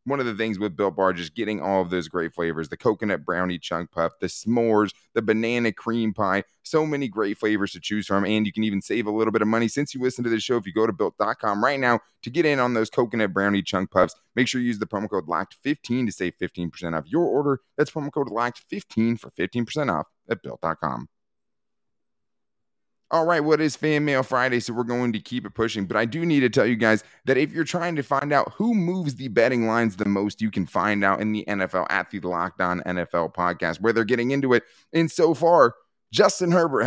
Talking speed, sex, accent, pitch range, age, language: 240 wpm, male, American, 100-135 Hz, 30-49, English